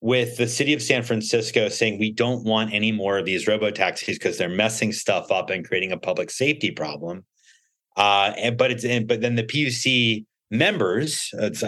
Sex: male